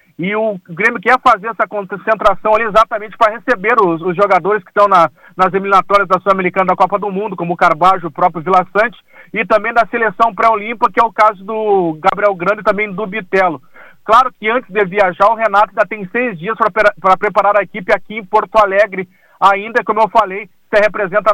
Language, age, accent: Portuguese, 40-59, Brazilian